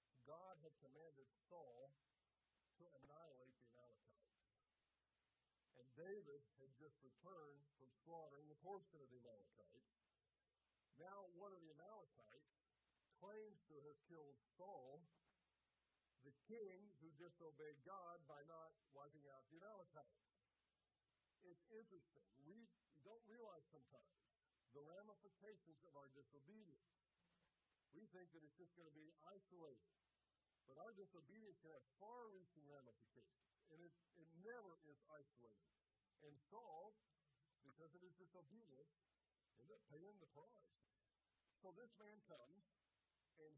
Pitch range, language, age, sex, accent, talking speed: 140-185 Hz, English, 50-69, male, American, 125 wpm